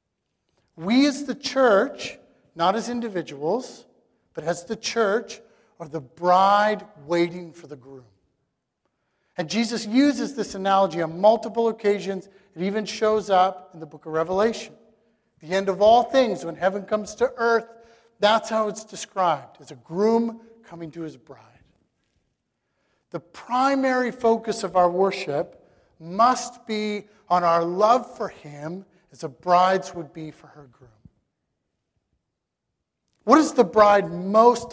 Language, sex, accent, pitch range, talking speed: English, male, American, 165-225 Hz, 140 wpm